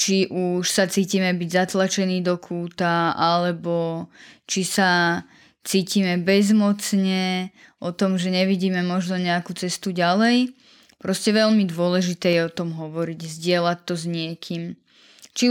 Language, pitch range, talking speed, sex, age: Slovak, 170-195 Hz, 130 wpm, female, 10-29